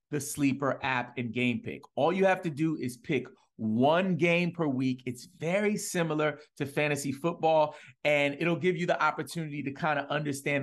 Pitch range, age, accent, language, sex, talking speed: 130-170 Hz, 30-49, American, English, male, 185 wpm